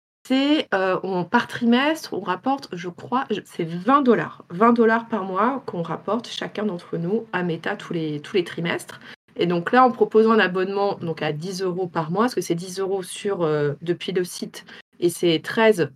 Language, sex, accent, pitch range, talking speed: French, female, French, 175-225 Hz, 200 wpm